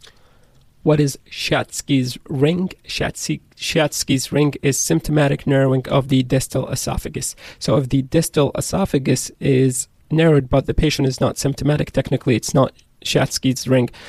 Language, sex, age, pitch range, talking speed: English, male, 30-49, 130-145 Hz, 130 wpm